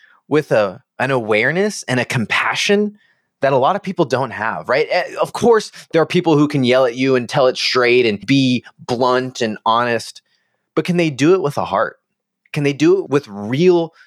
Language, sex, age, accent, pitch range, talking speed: English, male, 20-39, American, 105-160 Hz, 205 wpm